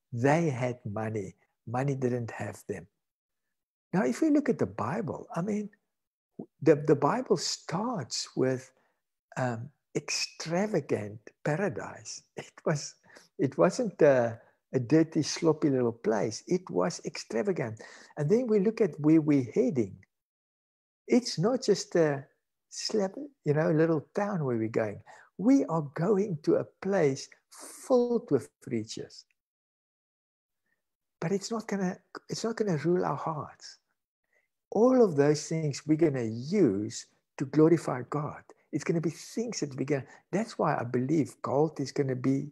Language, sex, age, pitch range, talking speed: English, male, 60-79, 130-185 Hz, 145 wpm